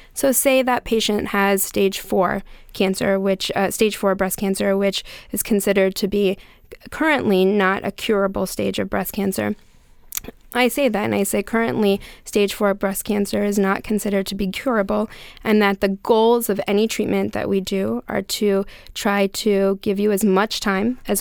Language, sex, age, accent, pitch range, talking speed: English, female, 10-29, American, 195-220 Hz, 180 wpm